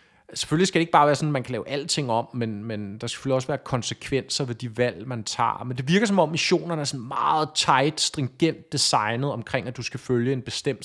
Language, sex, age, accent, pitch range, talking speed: Danish, male, 30-49, native, 130-180 Hz, 250 wpm